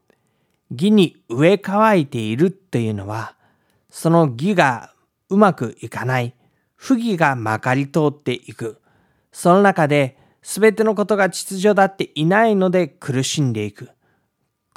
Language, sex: Japanese, male